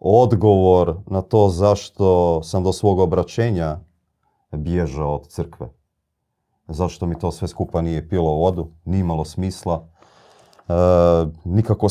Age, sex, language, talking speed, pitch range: 40-59, male, Croatian, 115 wpm, 80-95 Hz